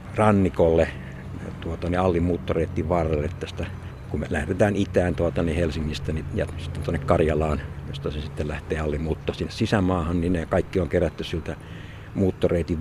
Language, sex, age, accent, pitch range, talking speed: Finnish, male, 60-79, native, 80-95 Hz, 140 wpm